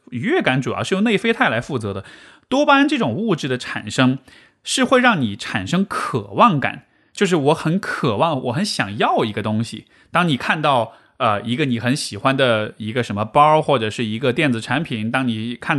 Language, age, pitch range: Chinese, 20-39, 120-190 Hz